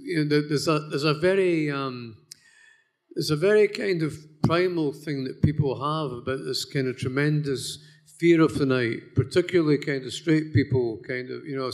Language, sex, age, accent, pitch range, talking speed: English, male, 50-69, British, 130-150 Hz, 185 wpm